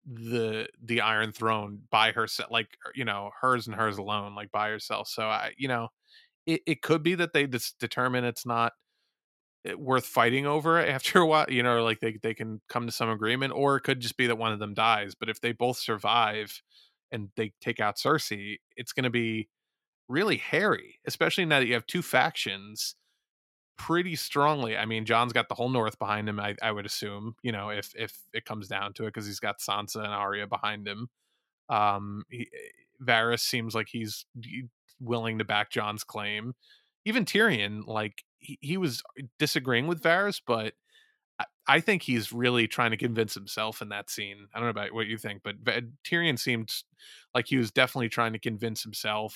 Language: English